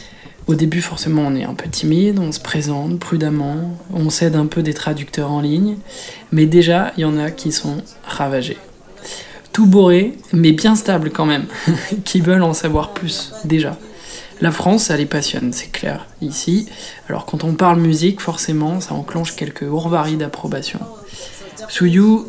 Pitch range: 155-190 Hz